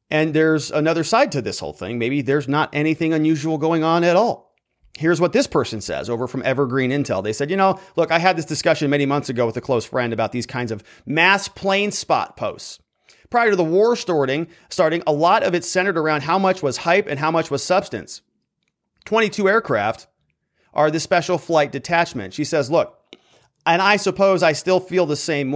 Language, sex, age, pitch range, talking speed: English, male, 30-49, 130-185 Hz, 210 wpm